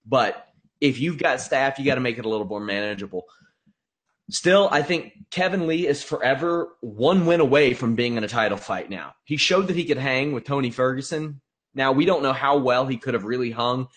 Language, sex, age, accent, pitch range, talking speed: English, male, 30-49, American, 120-155 Hz, 220 wpm